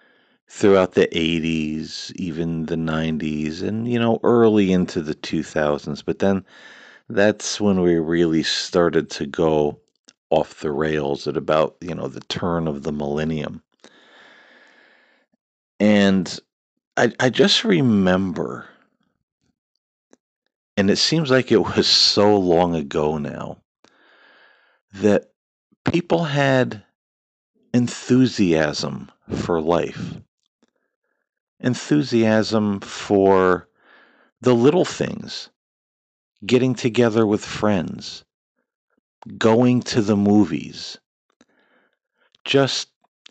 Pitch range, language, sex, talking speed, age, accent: 80-110 Hz, English, male, 95 wpm, 50-69, American